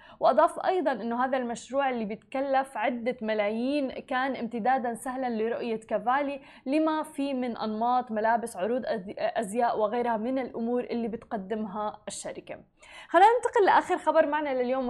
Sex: female